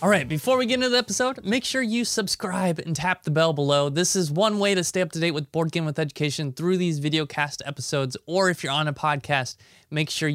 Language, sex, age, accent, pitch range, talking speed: English, male, 20-39, American, 135-170 Hz, 255 wpm